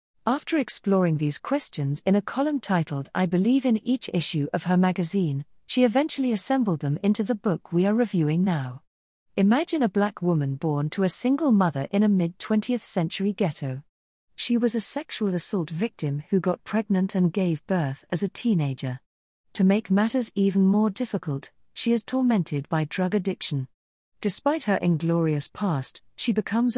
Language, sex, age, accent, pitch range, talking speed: English, female, 40-59, British, 160-215 Hz, 165 wpm